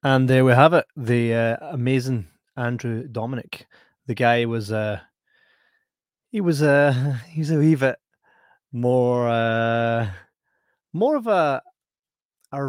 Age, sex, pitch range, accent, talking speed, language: 20-39, male, 115-135 Hz, British, 135 wpm, English